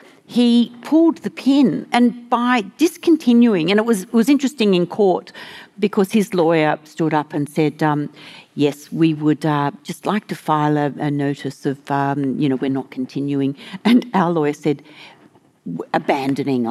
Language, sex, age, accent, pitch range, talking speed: English, female, 50-69, Australian, 155-230 Hz, 165 wpm